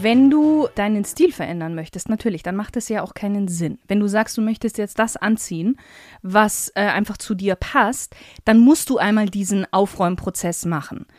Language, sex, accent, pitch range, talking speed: German, female, German, 195-245 Hz, 190 wpm